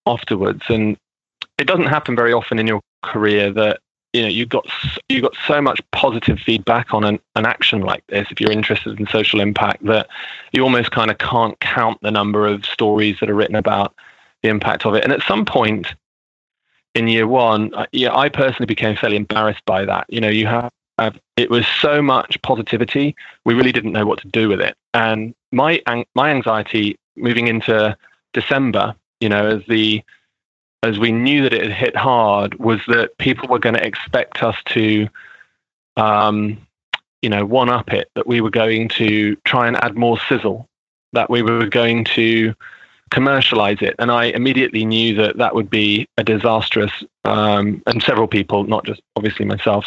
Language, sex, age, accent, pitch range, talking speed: English, male, 20-39, British, 105-120 Hz, 190 wpm